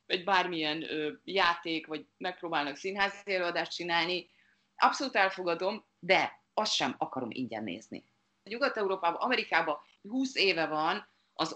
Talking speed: 120 wpm